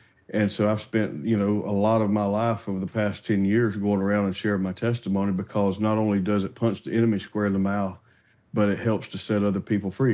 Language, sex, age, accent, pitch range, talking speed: English, male, 50-69, American, 100-115 Hz, 250 wpm